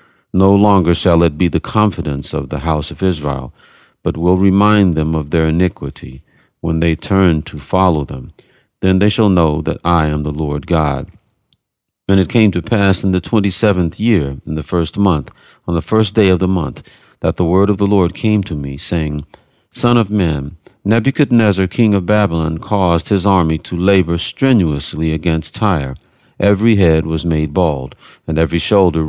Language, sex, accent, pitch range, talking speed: English, male, American, 80-100 Hz, 180 wpm